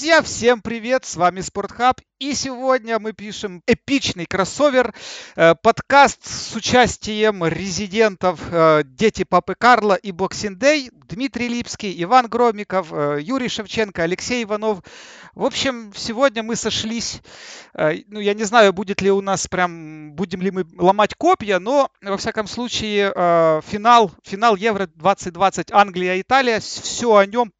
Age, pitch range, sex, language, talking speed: 40-59, 170-220 Hz, male, Russian, 125 wpm